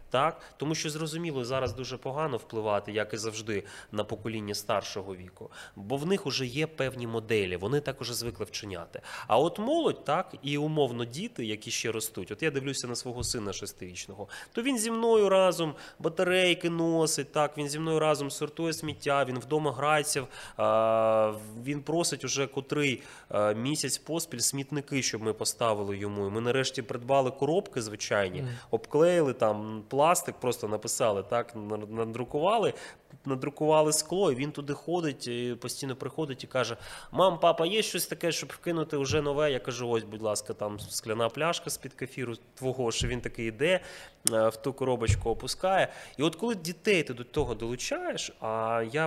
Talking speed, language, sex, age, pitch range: 160 wpm, Ukrainian, male, 20-39, 115-160 Hz